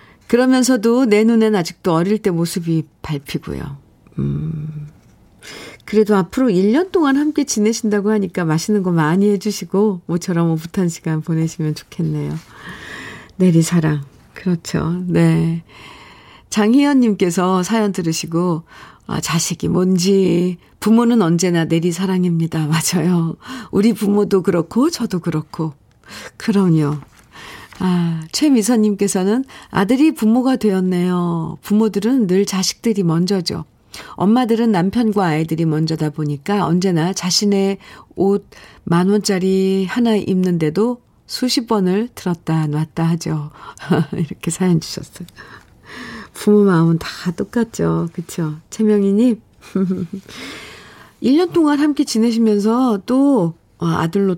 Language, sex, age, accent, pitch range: Korean, female, 50-69, native, 165-215 Hz